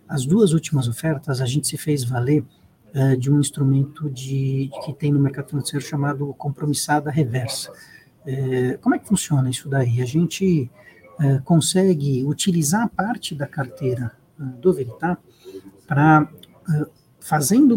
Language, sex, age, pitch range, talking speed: Portuguese, male, 60-79, 135-180 Hz, 150 wpm